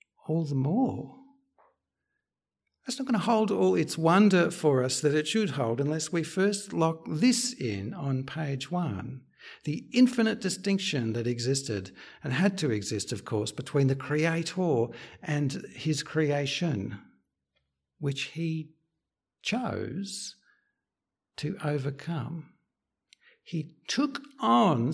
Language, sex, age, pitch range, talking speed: English, male, 60-79, 125-175 Hz, 125 wpm